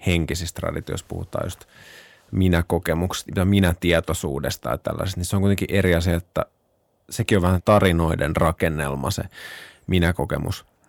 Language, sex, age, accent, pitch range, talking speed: Finnish, male, 20-39, native, 85-100 Hz, 125 wpm